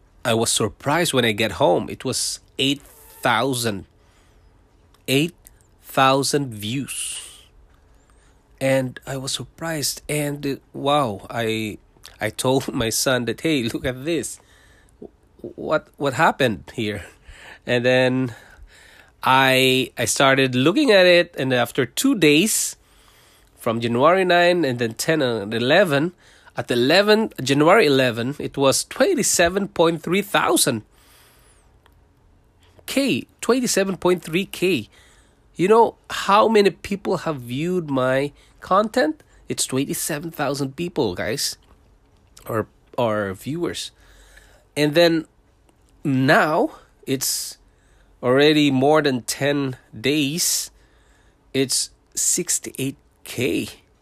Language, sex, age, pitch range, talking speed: English, male, 20-39, 115-160 Hz, 100 wpm